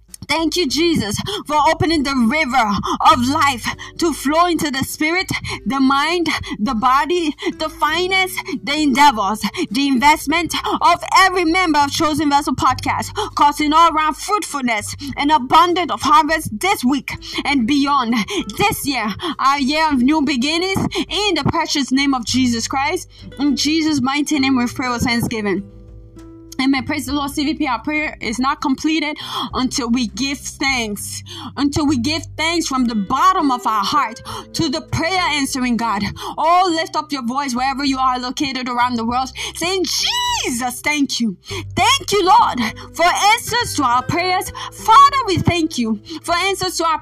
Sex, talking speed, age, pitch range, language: female, 160 wpm, 20-39, 265-345 Hz, English